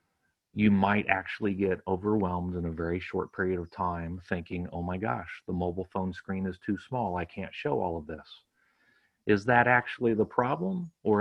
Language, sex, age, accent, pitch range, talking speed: English, male, 40-59, American, 95-115 Hz, 185 wpm